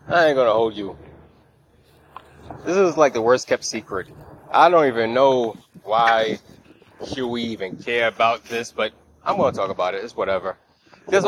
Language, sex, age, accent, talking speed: English, male, 20-39, American, 170 wpm